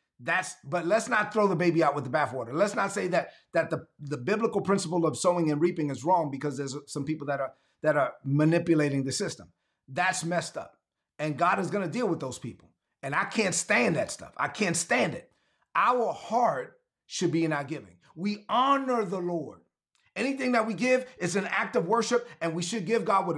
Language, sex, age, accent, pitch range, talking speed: English, male, 30-49, American, 170-230 Hz, 220 wpm